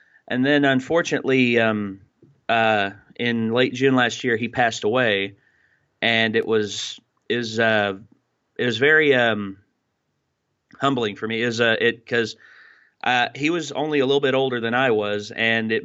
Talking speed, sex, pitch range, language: 165 wpm, male, 110-135 Hz, English